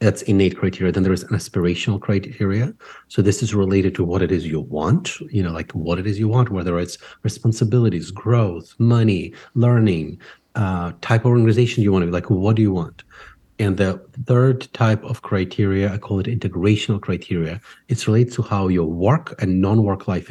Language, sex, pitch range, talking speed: English, male, 90-120 Hz, 195 wpm